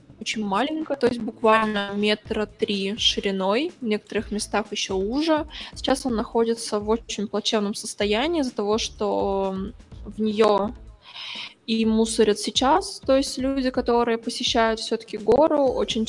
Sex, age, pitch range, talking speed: female, 20-39, 205-250 Hz, 130 wpm